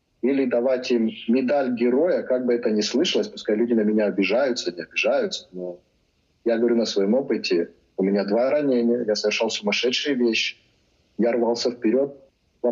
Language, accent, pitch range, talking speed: Ukrainian, native, 105-125 Hz, 165 wpm